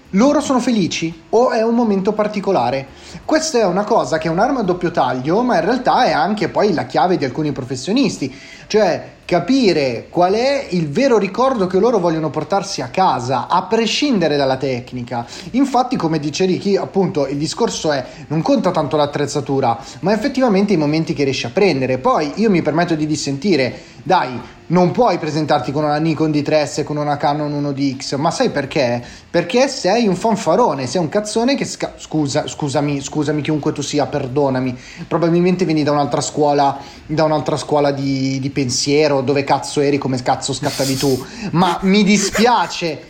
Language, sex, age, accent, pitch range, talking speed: Italian, male, 30-49, native, 145-195 Hz, 175 wpm